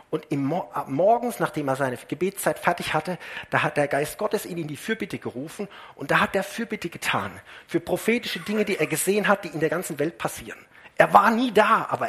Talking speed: 210 wpm